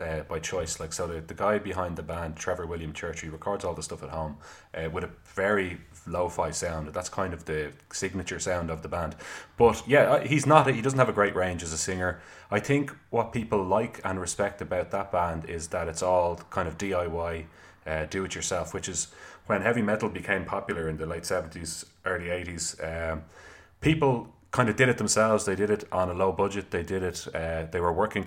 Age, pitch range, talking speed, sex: 30-49, 80-95 Hz, 225 wpm, male